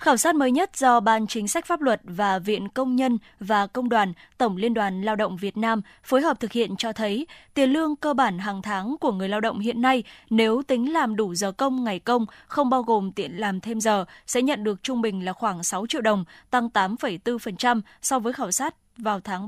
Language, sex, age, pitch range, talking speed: Vietnamese, female, 20-39, 210-260 Hz, 230 wpm